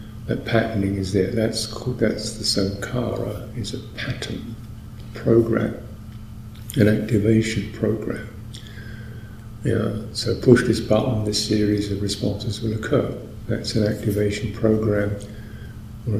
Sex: male